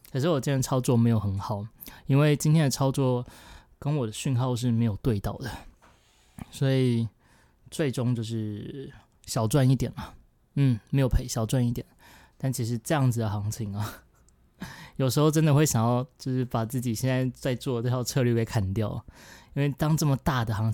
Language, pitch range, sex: Chinese, 110-135 Hz, male